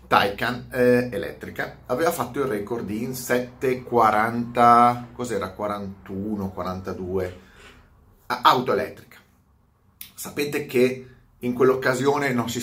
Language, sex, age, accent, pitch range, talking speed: Italian, male, 30-49, native, 115-150 Hz, 95 wpm